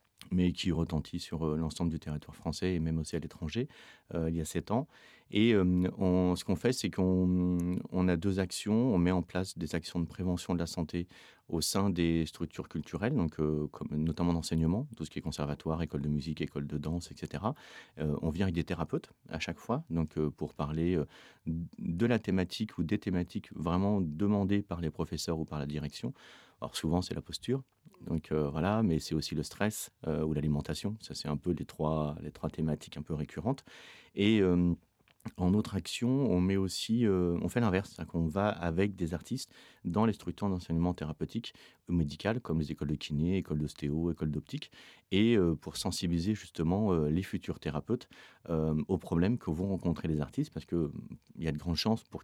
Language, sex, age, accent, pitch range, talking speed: French, male, 40-59, French, 80-95 Hz, 200 wpm